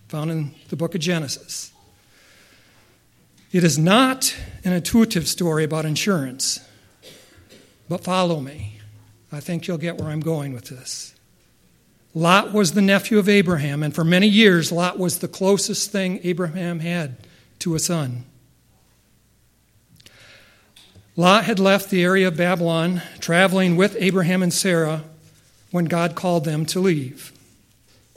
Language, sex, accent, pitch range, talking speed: English, male, American, 140-190 Hz, 135 wpm